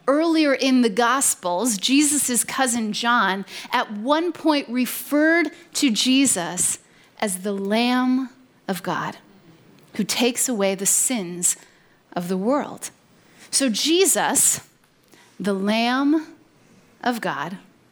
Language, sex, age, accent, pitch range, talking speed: English, female, 30-49, American, 215-295 Hz, 105 wpm